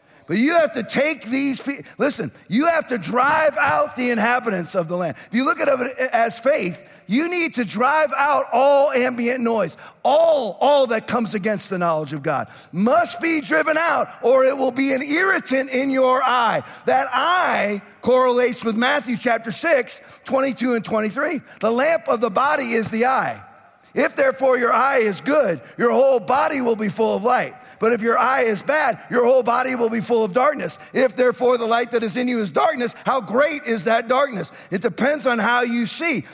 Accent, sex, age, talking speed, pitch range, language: American, male, 40-59, 200 wpm, 230-285 Hz, English